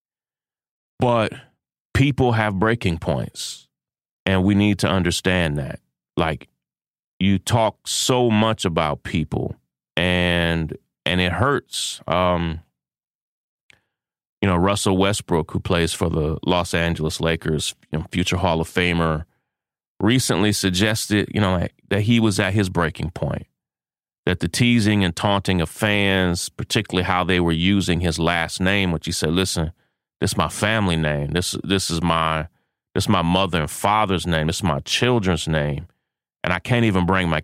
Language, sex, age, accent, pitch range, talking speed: English, male, 30-49, American, 80-105 Hz, 155 wpm